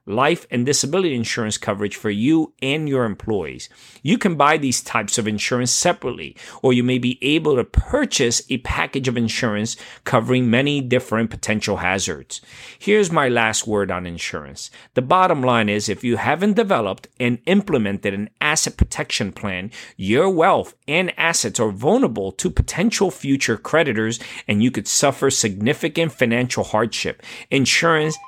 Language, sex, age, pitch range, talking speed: English, male, 40-59, 110-145 Hz, 155 wpm